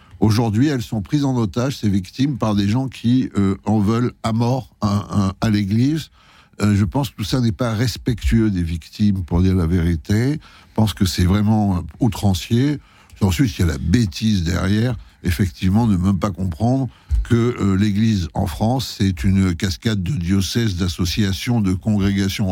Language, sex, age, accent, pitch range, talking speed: French, male, 60-79, French, 95-125 Hz, 185 wpm